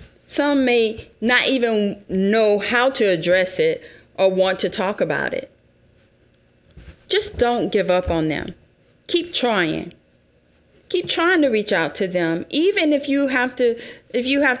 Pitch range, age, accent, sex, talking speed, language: 165-250 Hz, 30-49, American, female, 140 wpm, English